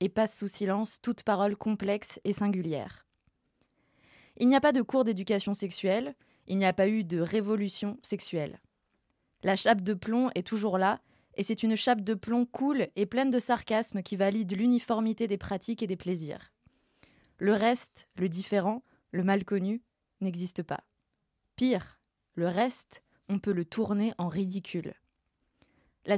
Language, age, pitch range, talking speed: French, 20-39, 190-230 Hz, 160 wpm